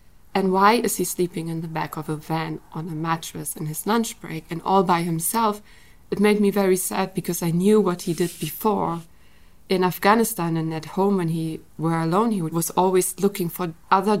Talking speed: 205 wpm